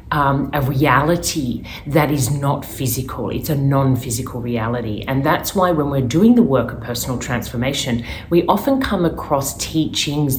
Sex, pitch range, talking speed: female, 125-150 Hz, 155 wpm